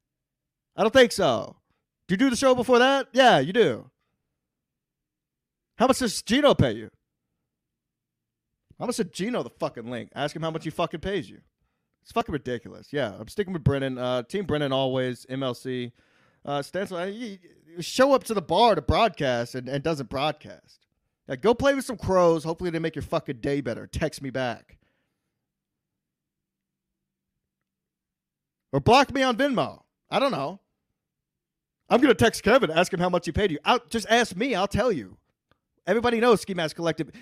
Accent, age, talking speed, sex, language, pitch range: American, 30-49, 180 wpm, male, English, 130-185 Hz